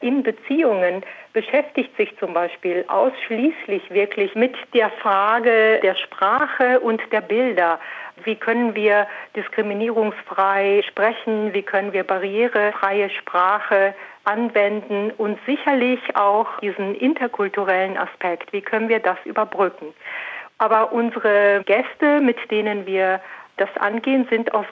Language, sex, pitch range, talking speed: German, female, 195-230 Hz, 115 wpm